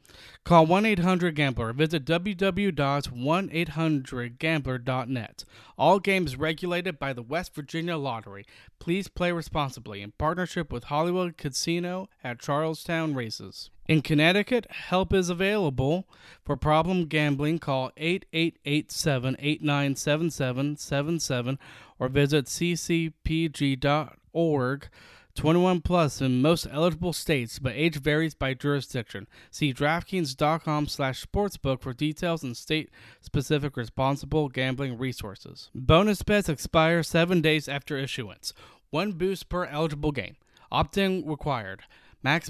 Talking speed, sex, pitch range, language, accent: 100 wpm, male, 135-170 Hz, English, American